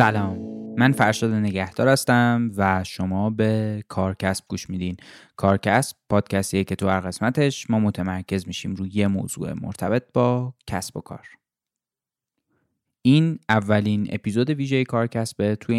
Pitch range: 100-115 Hz